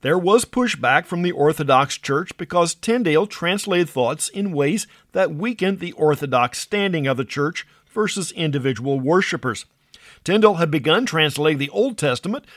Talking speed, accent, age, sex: 150 wpm, American, 50-69, male